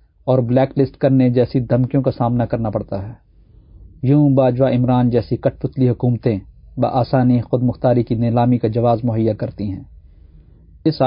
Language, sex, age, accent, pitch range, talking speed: English, male, 50-69, Indian, 115-135 Hz, 165 wpm